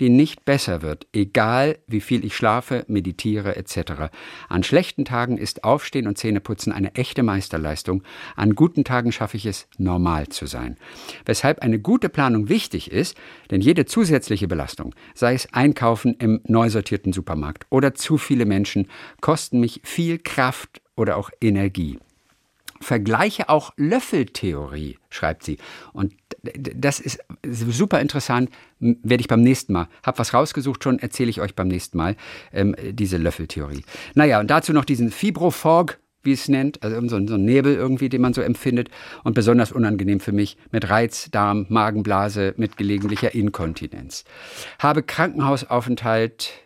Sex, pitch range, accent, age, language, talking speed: male, 100-130 Hz, German, 50-69, German, 150 wpm